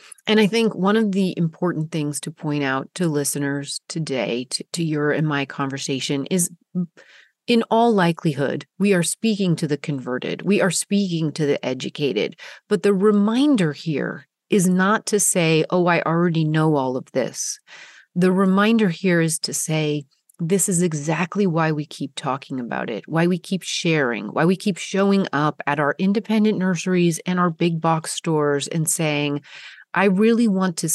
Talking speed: 175 wpm